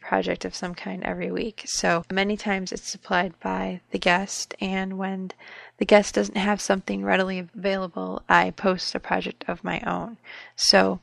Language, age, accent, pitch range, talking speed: English, 20-39, American, 170-210 Hz, 170 wpm